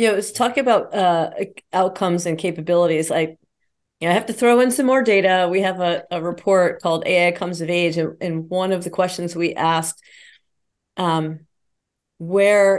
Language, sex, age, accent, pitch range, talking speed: English, female, 40-59, American, 165-200 Hz, 175 wpm